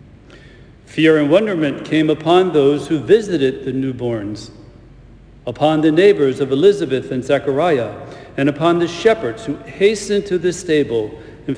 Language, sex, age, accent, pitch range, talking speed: English, male, 60-79, American, 125-170 Hz, 140 wpm